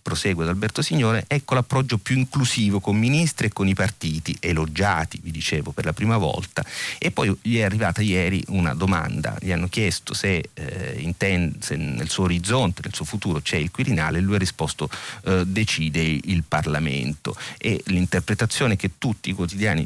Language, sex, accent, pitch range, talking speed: Italian, male, native, 85-110 Hz, 180 wpm